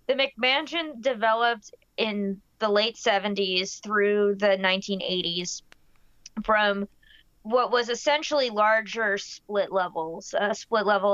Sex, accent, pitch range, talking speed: female, American, 190-225 Hz, 110 wpm